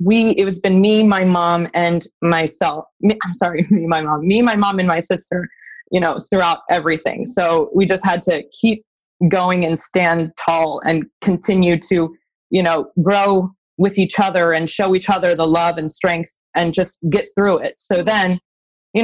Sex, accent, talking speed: female, American, 185 wpm